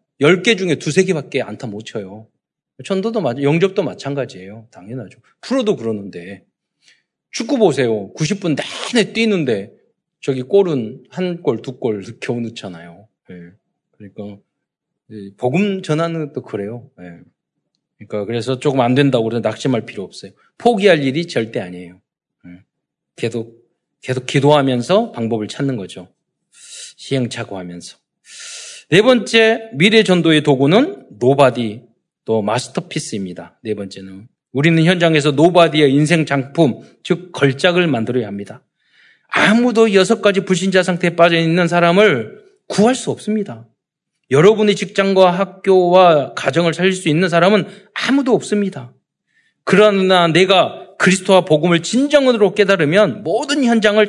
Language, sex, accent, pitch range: Korean, male, native, 120-200 Hz